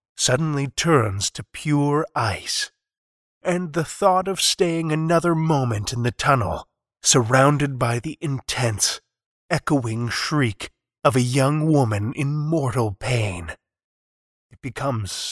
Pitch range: 105-155 Hz